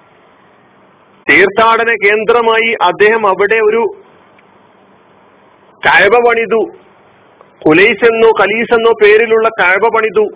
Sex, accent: male, native